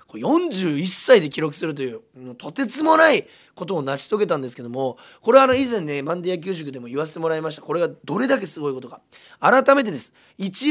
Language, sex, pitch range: Japanese, male, 150-240 Hz